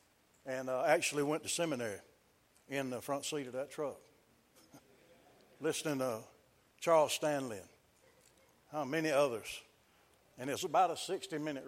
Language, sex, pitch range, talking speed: English, male, 125-155 Hz, 130 wpm